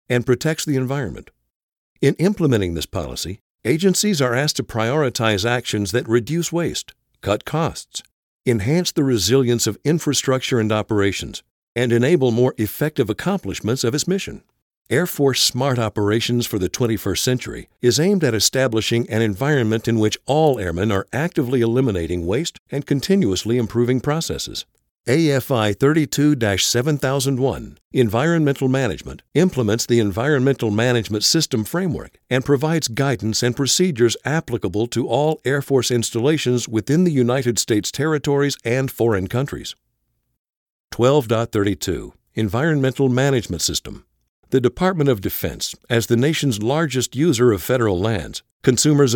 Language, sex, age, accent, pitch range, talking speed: English, male, 60-79, American, 110-145 Hz, 130 wpm